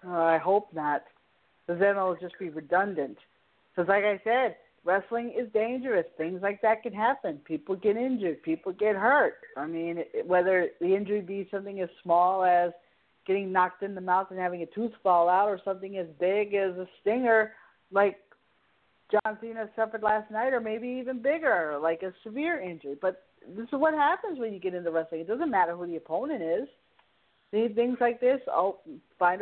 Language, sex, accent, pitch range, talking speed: English, female, American, 180-225 Hz, 190 wpm